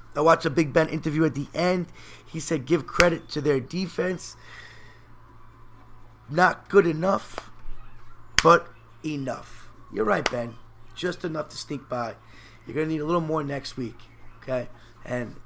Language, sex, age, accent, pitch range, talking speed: English, male, 30-49, American, 115-155 Hz, 155 wpm